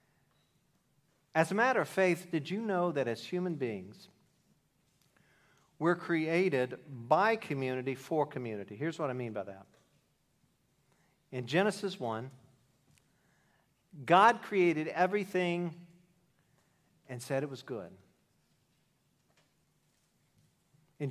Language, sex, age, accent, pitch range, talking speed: English, male, 50-69, American, 130-175 Hz, 100 wpm